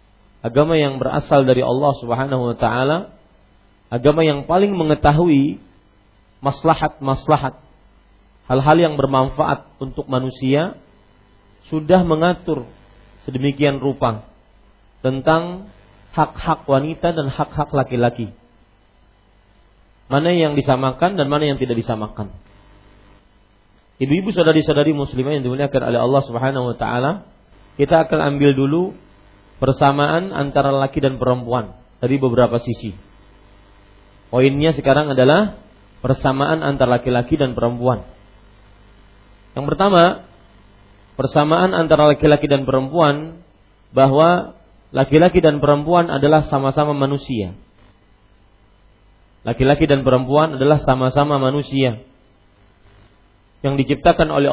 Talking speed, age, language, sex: 100 wpm, 40-59, Malay, male